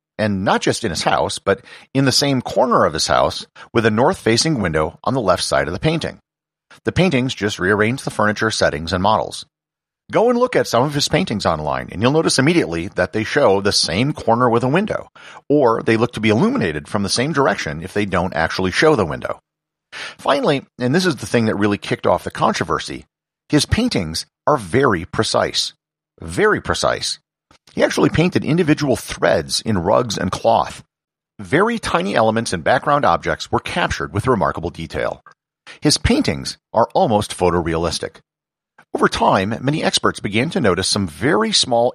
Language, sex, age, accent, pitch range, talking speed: English, male, 50-69, American, 95-135 Hz, 180 wpm